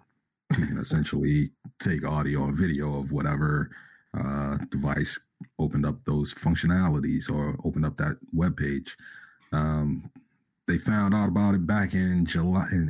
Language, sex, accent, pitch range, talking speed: English, male, American, 75-85 Hz, 140 wpm